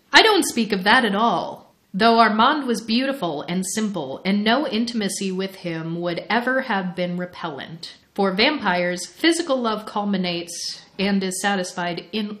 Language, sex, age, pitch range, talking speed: English, female, 30-49, 175-220 Hz, 155 wpm